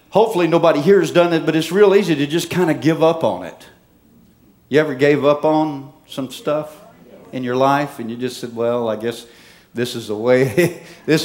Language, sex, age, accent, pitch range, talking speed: English, male, 50-69, American, 135-175 Hz, 215 wpm